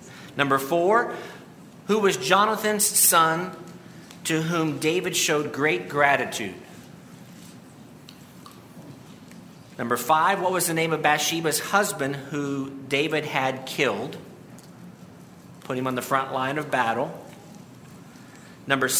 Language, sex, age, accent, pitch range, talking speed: English, male, 50-69, American, 130-165 Hz, 105 wpm